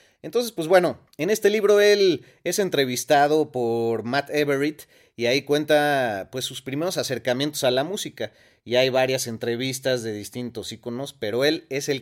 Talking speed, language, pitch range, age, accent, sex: 165 wpm, Spanish, 120-150 Hz, 30-49, Mexican, male